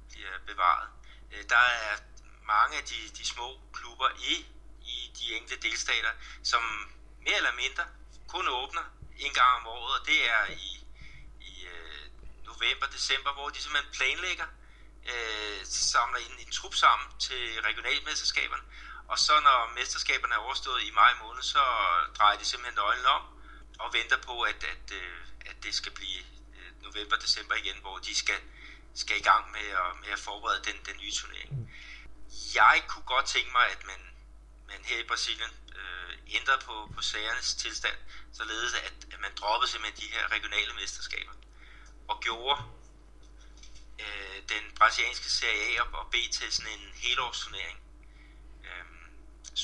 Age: 60-79